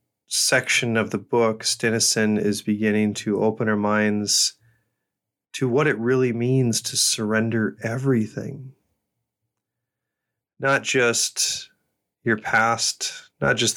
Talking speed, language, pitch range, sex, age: 110 wpm, English, 110-120 Hz, male, 30-49